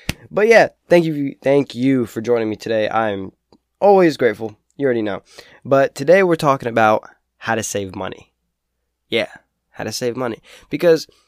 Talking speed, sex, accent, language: 165 wpm, male, American, English